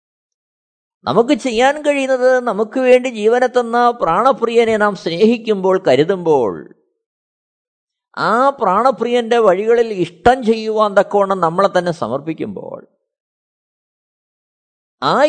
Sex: male